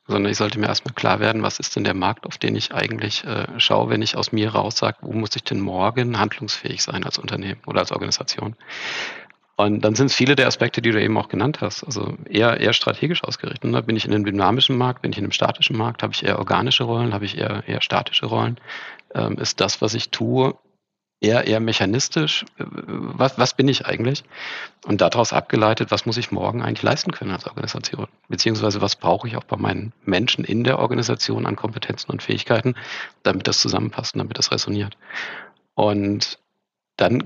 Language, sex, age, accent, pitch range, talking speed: German, male, 40-59, German, 105-120 Hz, 205 wpm